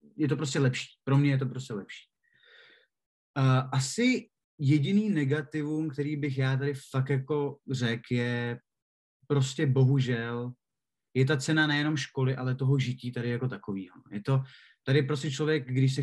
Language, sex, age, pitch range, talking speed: Czech, male, 20-39, 130-150 Hz, 155 wpm